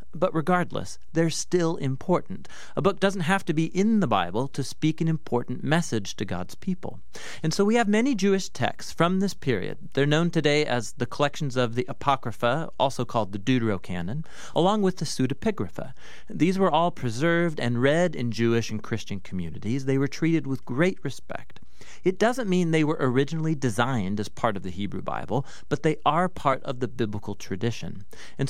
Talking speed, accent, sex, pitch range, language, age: 185 wpm, American, male, 120-170 Hz, English, 40-59